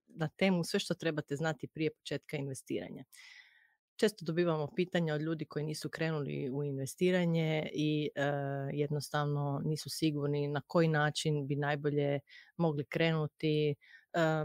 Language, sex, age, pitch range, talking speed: Croatian, female, 30-49, 145-160 Hz, 135 wpm